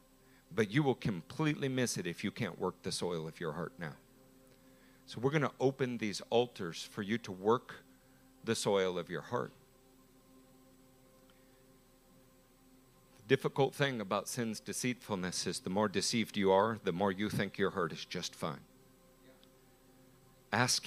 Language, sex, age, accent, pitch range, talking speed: English, male, 50-69, American, 110-130 Hz, 155 wpm